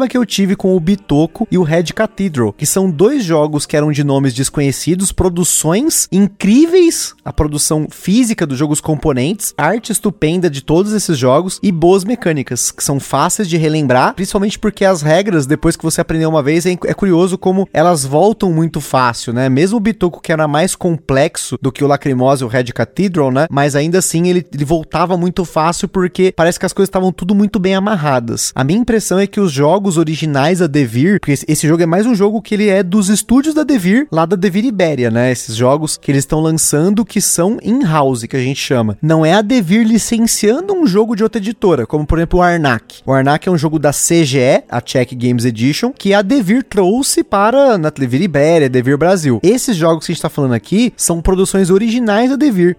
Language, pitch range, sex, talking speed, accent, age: Portuguese, 150-205 Hz, male, 210 wpm, Brazilian, 20-39